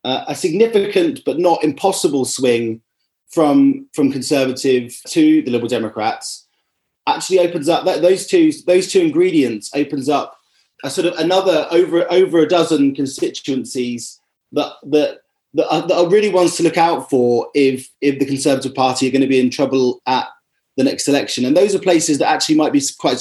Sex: male